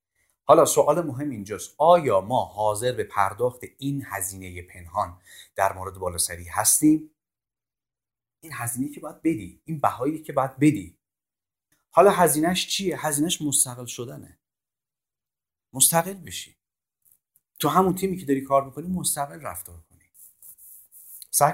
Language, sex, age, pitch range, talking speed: Persian, male, 30-49, 110-145 Hz, 130 wpm